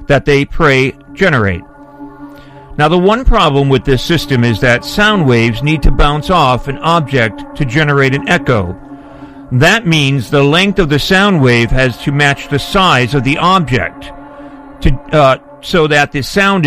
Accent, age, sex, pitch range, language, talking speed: American, 50-69, male, 130-170 Hz, English, 170 wpm